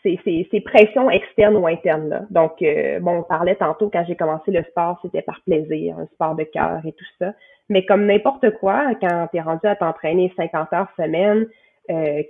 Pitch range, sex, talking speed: 170-210 Hz, female, 215 wpm